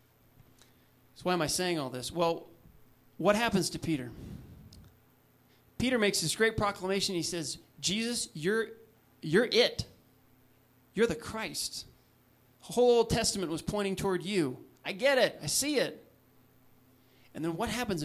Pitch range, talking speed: 130-185 Hz, 145 wpm